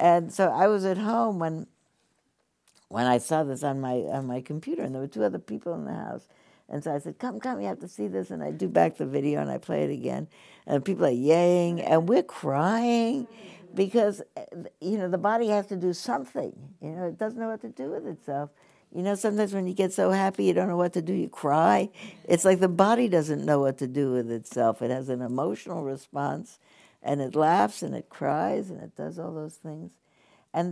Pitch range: 130-190 Hz